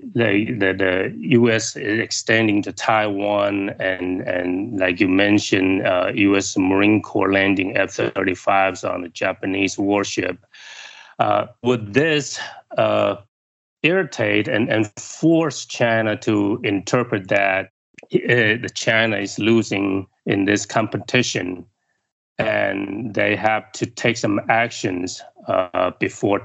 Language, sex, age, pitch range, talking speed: English, male, 30-49, 95-115 Hz, 120 wpm